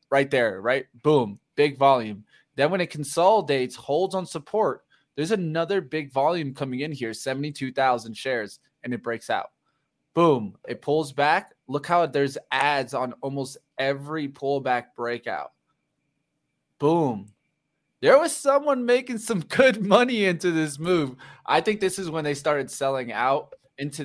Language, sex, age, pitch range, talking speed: English, male, 20-39, 120-150 Hz, 150 wpm